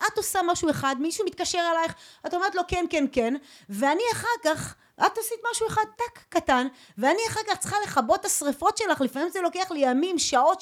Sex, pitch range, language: female, 230-330 Hz, Hebrew